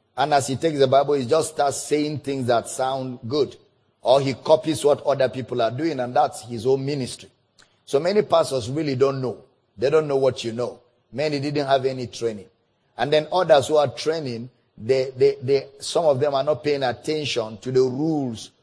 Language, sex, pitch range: English, male, 120-145 Hz